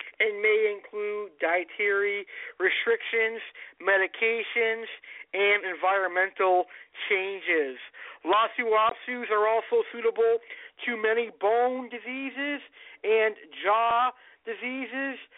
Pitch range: 205-275 Hz